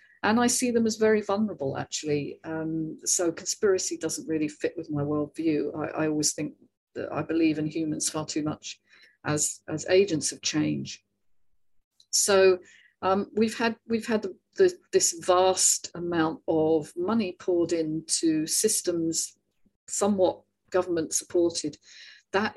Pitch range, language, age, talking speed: 160-230 Hz, English, 50-69, 135 wpm